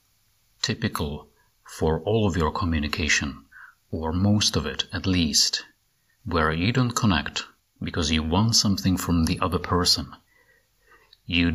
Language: English